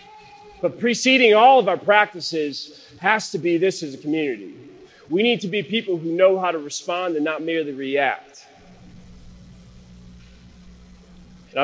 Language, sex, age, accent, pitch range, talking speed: English, male, 30-49, American, 135-200 Hz, 145 wpm